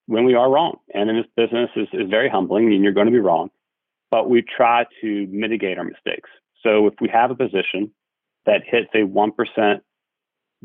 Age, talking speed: 40-59, 195 wpm